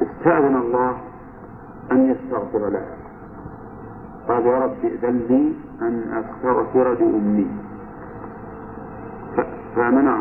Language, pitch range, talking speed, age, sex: Arabic, 115-145 Hz, 90 wpm, 50-69, male